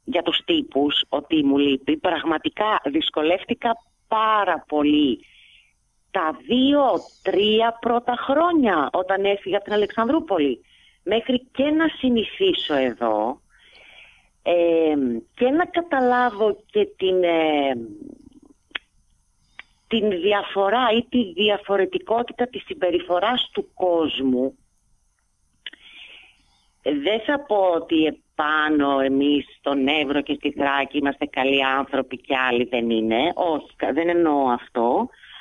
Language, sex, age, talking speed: Greek, female, 40-59, 105 wpm